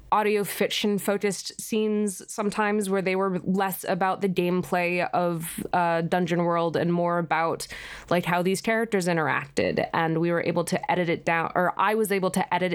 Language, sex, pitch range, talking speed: English, female, 175-205 Hz, 180 wpm